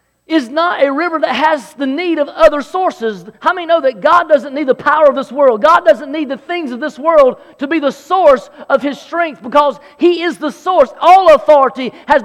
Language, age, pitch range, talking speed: English, 40-59, 265-330 Hz, 225 wpm